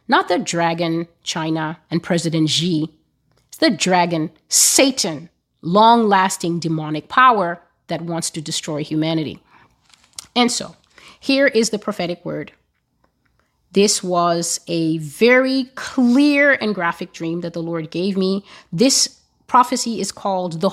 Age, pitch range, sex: 30-49, 170-210 Hz, female